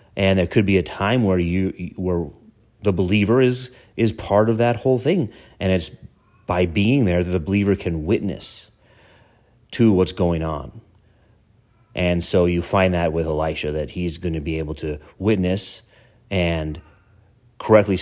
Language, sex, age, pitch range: English, male, 30-49, 85-110 Hz